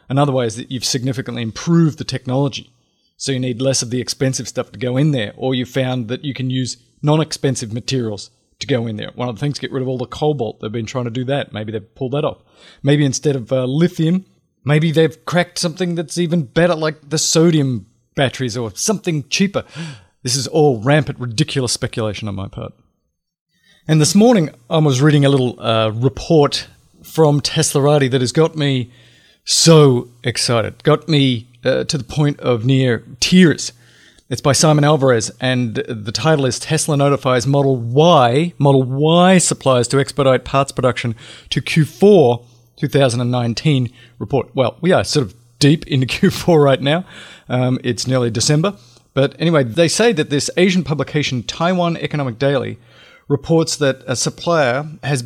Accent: Australian